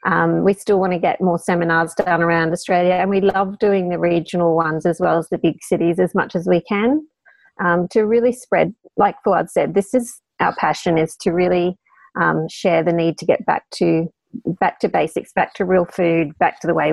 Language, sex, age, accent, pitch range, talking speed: English, female, 30-49, Australian, 170-190 Hz, 220 wpm